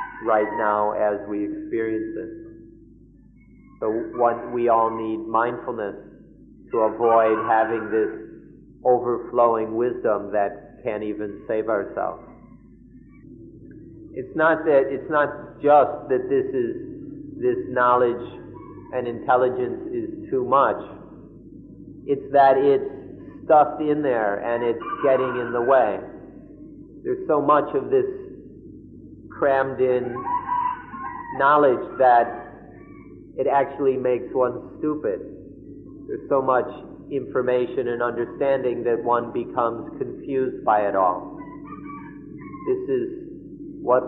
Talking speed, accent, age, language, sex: 110 wpm, American, 40-59, English, male